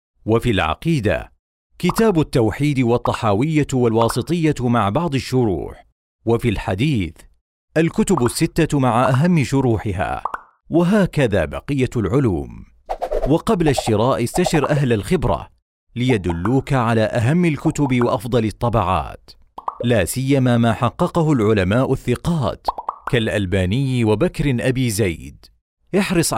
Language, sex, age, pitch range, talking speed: Arabic, male, 40-59, 110-150 Hz, 95 wpm